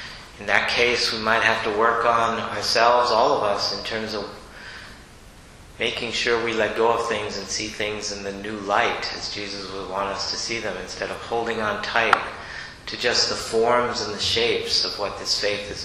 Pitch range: 100-125 Hz